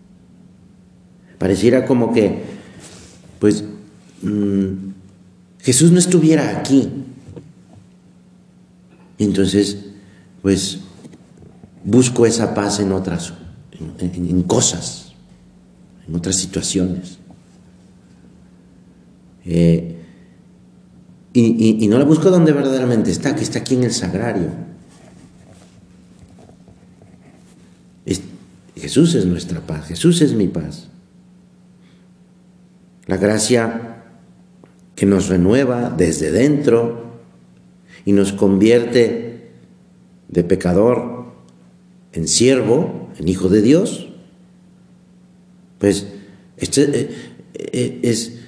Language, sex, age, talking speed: Spanish, male, 50-69, 85 wpm